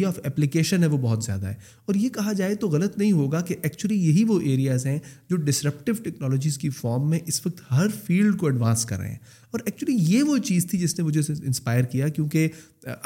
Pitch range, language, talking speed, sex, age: 135-180 Hz, Urdu, 95 wpm, male, 30-49